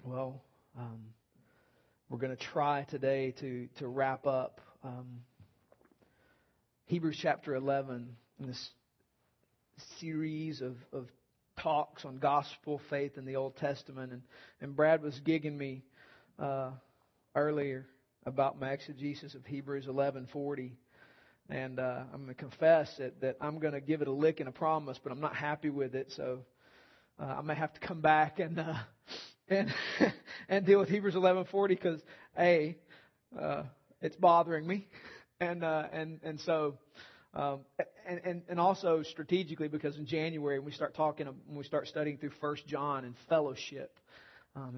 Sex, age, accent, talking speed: male, 40-59, American, 150 wpm